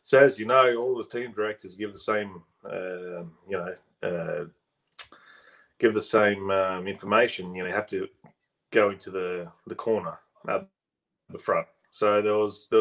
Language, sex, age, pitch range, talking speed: English, male, 30-49, 95-115 Hz, 175 wpm